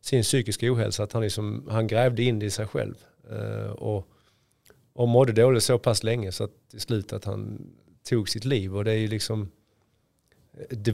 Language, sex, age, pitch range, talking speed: Swedish, male, 30-49, 105-120 Hz, 195 wpm